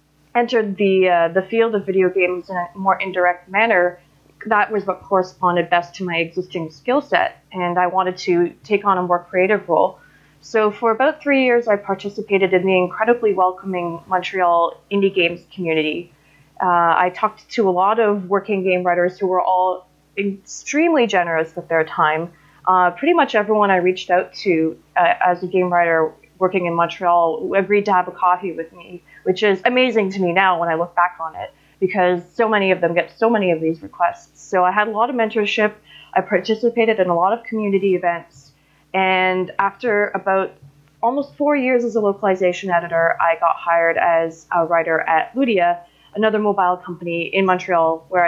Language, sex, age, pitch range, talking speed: English, female, 20-39, 170-205 Hz, 190 wpm